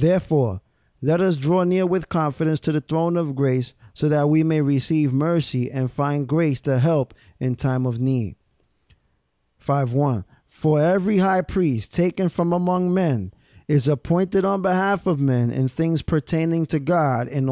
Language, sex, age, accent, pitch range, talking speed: English, male, 20-39, American, 130-165 Hz, 165 wpm